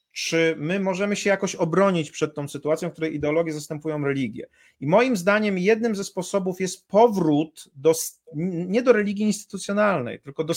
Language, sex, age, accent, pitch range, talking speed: Polish, male, 40-59, native, 165-200 Hz, 160 wpm